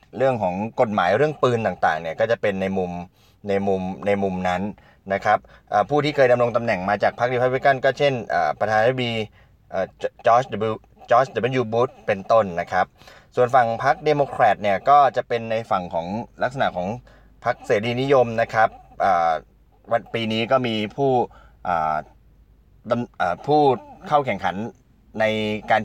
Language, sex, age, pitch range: Thai, male, 20-39, 105-135 Hz